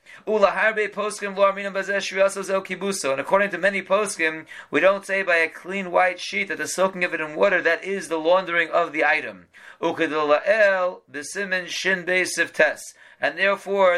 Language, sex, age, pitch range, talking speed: English, male, 40-59, 165-195 Hz, 125 wpm